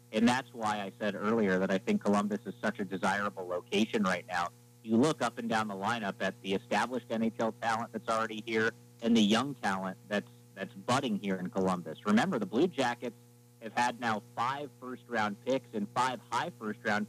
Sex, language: male, English